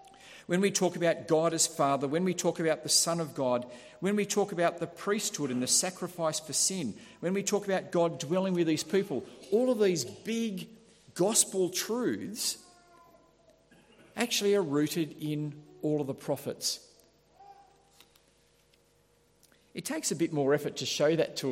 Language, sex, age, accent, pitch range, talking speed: English, male, 50-69, Australian, 140-200 Hz, 165 wpm